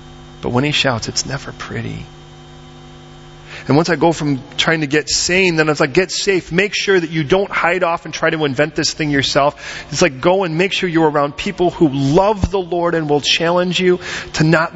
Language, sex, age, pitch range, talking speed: English, male, 40-59, 130-185 Hz, 220 wpm